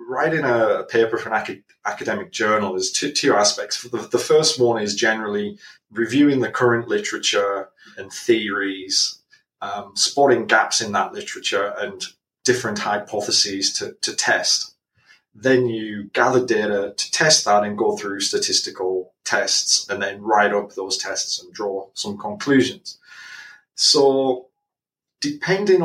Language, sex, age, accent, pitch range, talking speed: English, male, 30-49, British, 105-160 Hz, 135 wpm